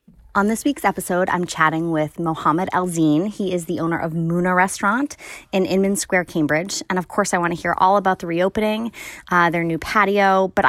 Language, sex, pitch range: English, female, 155-190 Hz